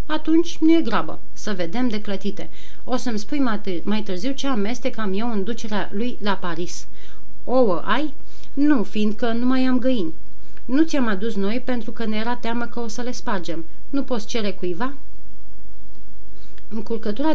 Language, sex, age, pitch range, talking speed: Romanian, female, 30-49, 195-250 Hz, 165 wpm